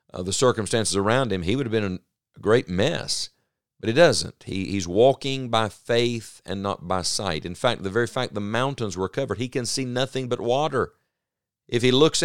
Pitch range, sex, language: 95-125 Hz, male, English